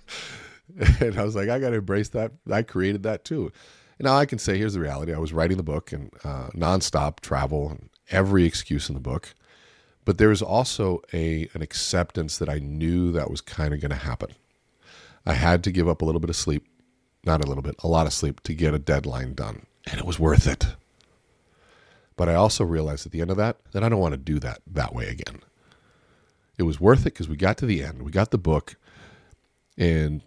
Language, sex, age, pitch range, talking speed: English, male, 40-59, 80-100 Hz, 225 wpm